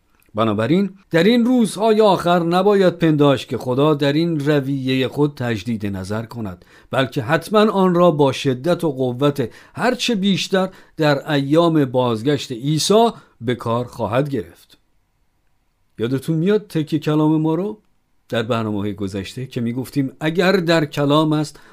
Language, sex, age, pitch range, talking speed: Persian, male, 50-69, 110-170 Hz, 140 wpm